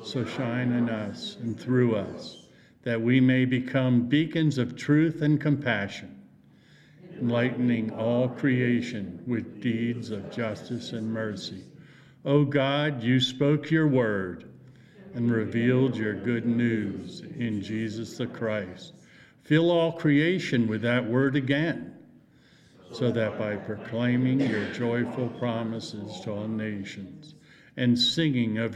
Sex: male